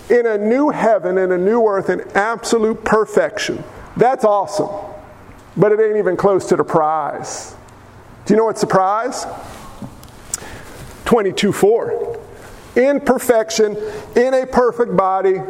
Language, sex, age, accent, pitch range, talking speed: English, male, 50-69, American, 180-240 Hz, 135 wpm